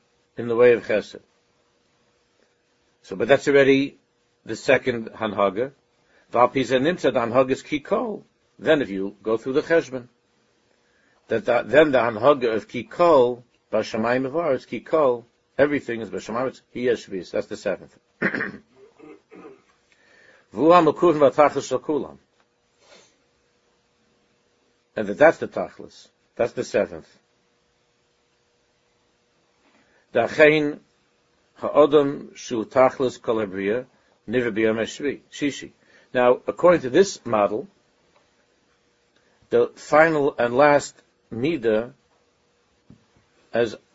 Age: 60-79